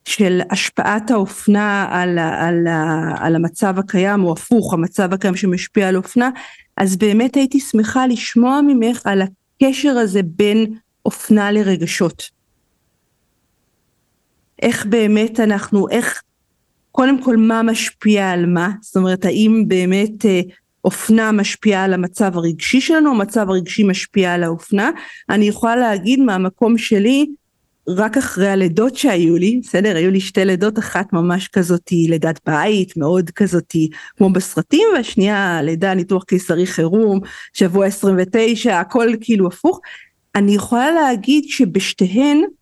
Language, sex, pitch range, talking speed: Hebrew, female, 185-235 Hz, 130 wpm